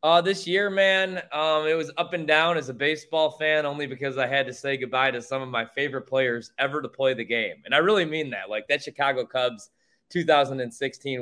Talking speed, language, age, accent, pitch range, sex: 225 wpm, English, 20-39, American, 130-165 Hz, male